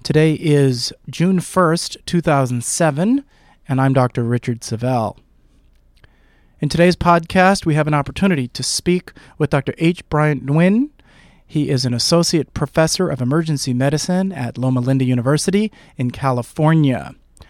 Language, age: English, 40-59